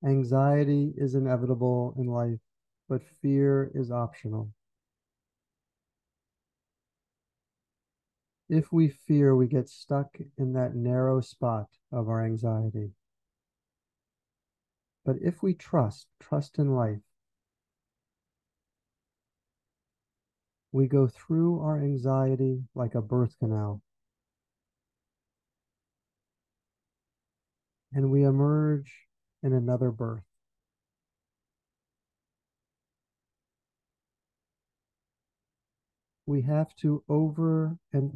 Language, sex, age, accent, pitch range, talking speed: English, male, 50-69, American, 120-140 Hz, 75 wpm